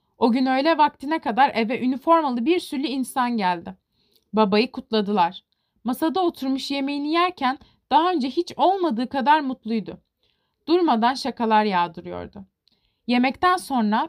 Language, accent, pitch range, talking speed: Turkish, native, 220-300 Hz, 120 wpm